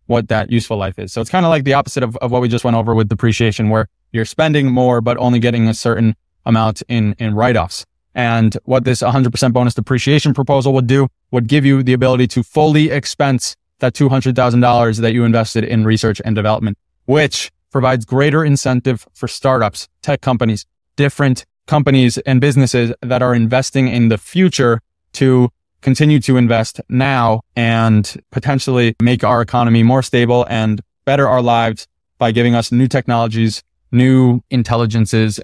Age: 20-39